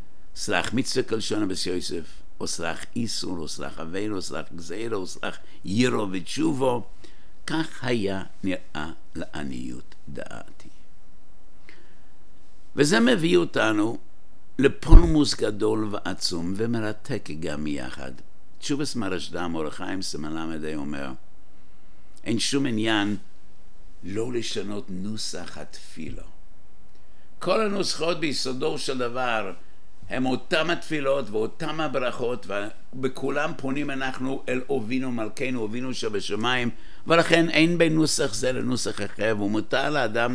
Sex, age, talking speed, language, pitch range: male, 60-79, 100 wpm, English, 90-130 Hz